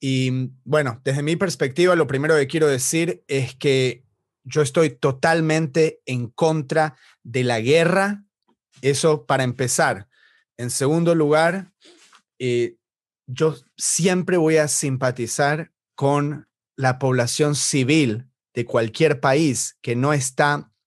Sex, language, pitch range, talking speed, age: male, Spanish, 130-160 Hz, 120 wpm, 30-49